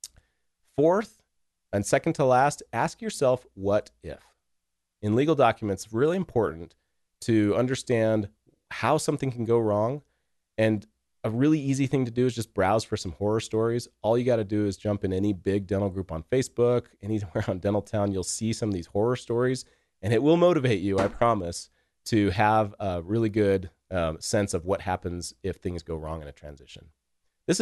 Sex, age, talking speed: male, 30-49, 180 wpm